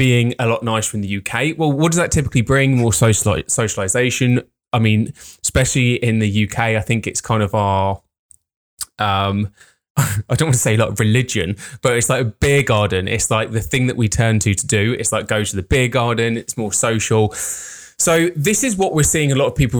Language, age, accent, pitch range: English, 20-39, British, 110-140 Hz